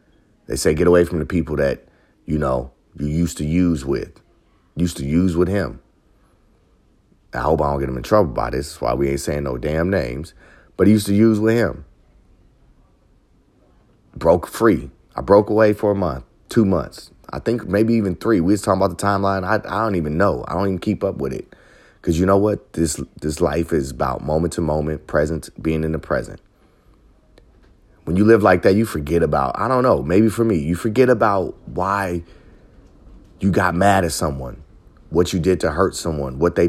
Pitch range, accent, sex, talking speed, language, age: 80-105 Hz, American, male, 205 wpm, English, 30-49